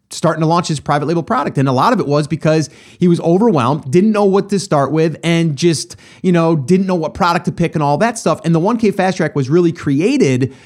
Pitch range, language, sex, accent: 130-180 Hz, English, male, American